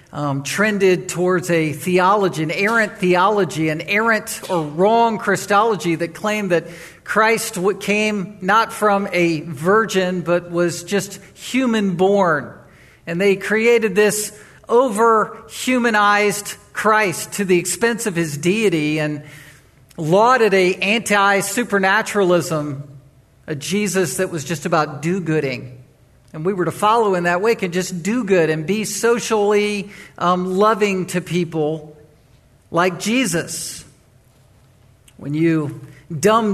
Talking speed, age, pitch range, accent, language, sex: 120 wpm, 50-69, 170-210 Hz, American, English, male